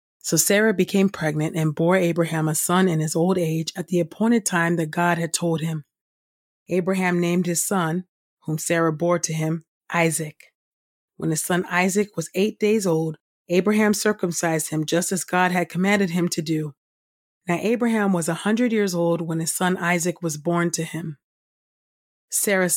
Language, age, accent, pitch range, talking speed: English, 30-49, American, 165-190 Hz, 175 wpm